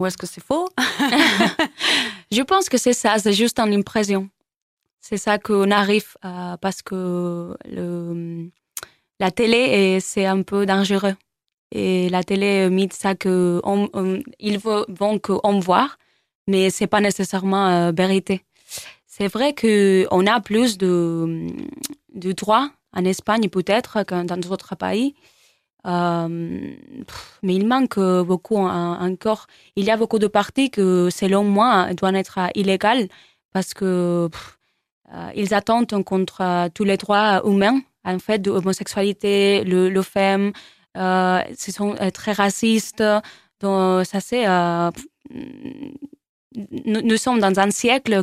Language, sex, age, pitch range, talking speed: French, female, 20-39, 185-220 Hz, 140 wpm